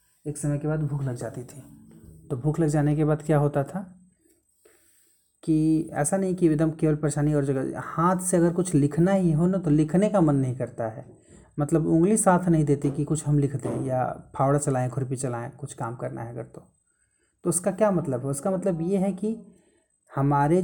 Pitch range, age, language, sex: 140-180 Hz, 30-49, Hindi, male